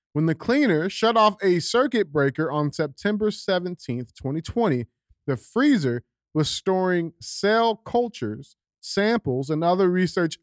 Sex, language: male, English